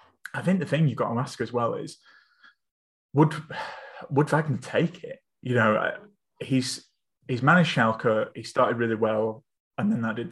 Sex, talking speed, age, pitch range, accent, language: male, 175 wpm, 20-39, 115-140 Hz, British, English